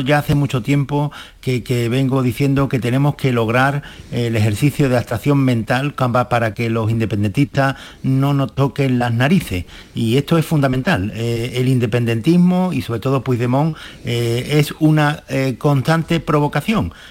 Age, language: 60-79, Spanish